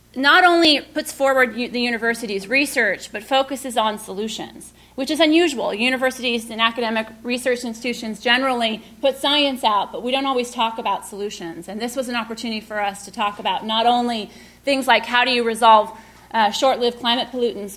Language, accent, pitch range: English, American, 215-255 Hz